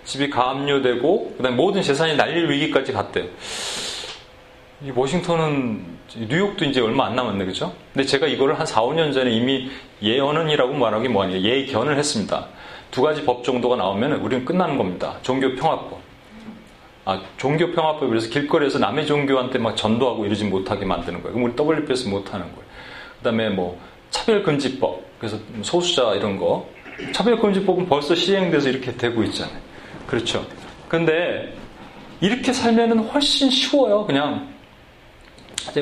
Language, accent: Korean, native